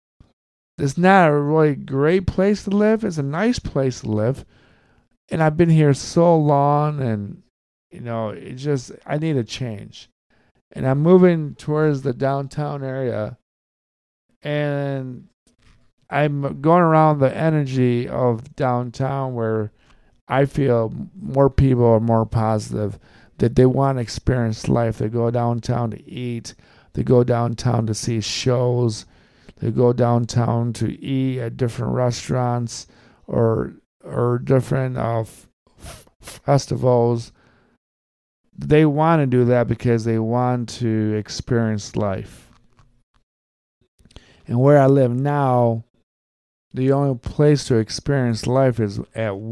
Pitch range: 115-140 Hz